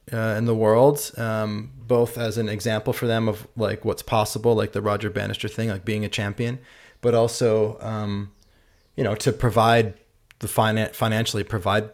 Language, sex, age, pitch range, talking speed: English, male, 20-39, 105-120 Hz, 175 wpm